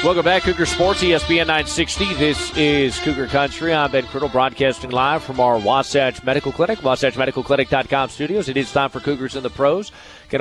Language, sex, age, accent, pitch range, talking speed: English, male, 40-59, American, 130-155 Hz, 180 wpm